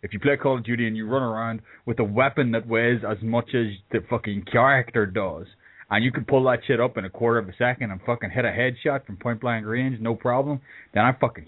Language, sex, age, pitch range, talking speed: English, male, 20-39, 110-130 Hz, 255 wpm